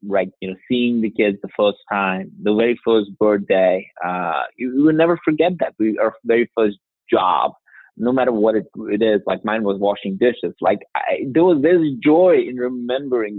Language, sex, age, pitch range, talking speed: English, male, 30-49, 100-125 Hz, 195 wpm